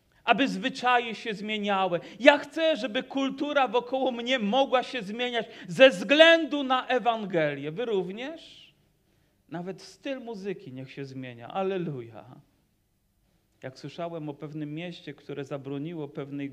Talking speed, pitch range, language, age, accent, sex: 125 wpm, 140-185 Hz, Polish, 40-59, native, male